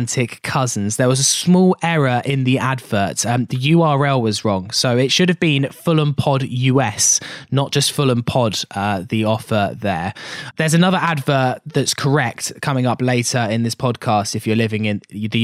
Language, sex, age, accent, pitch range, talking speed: English, male, 10-29, British, 120-150 Hz, 180 wpm